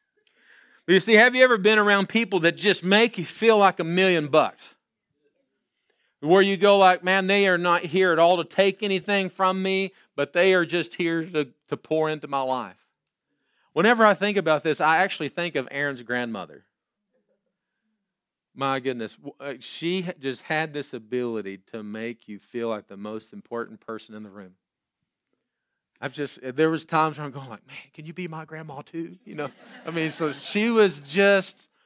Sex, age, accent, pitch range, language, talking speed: male, 40-59, American, 135-190 Hz, English, 185 wpm